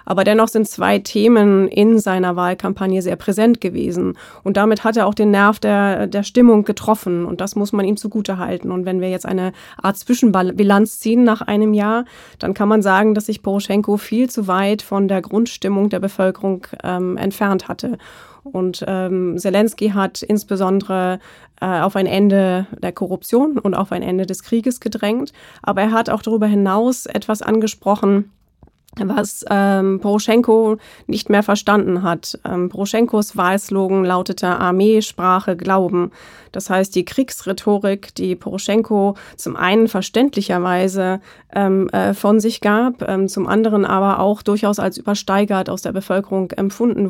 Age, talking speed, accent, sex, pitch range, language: 20-39, 160 wpm, German, female, 190-215 Hz, German